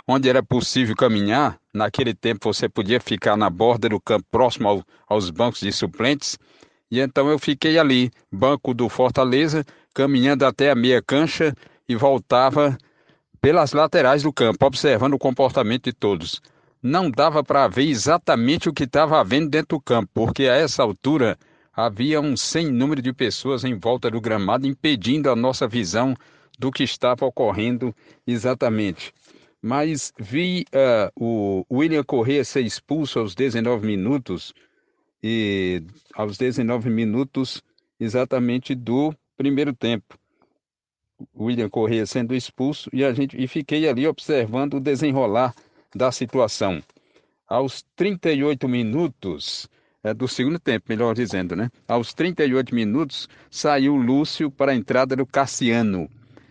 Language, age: Portuguese, 60-79